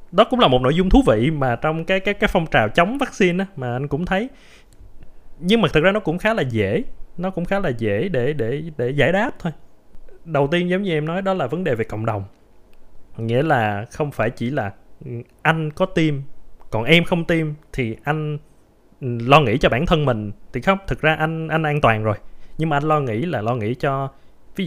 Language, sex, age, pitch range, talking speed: Vietnamese, male, 20-39, 110-160 Hz, 230 wpm